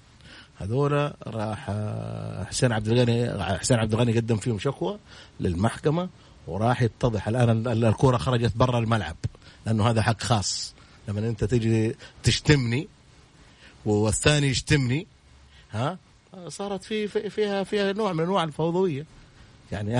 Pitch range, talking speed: 115-160 Hz, 115 wpm